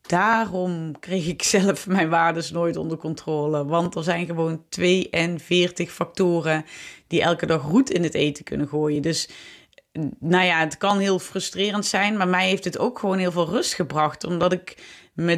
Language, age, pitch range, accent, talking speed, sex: Dutch, 20-39, 155-180 Hz, Dutch, 175 wpm, female